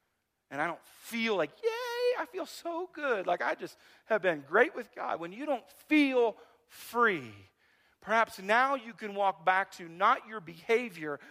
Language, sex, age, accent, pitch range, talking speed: English, male, 40-59, American, 125-185 Hz, 175 wpm